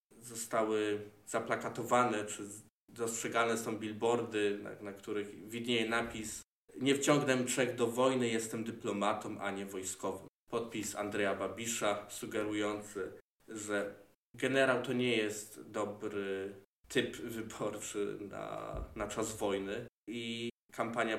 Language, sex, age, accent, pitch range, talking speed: Polish, male, 20-39, native, 100-115 Hz, 110 wpm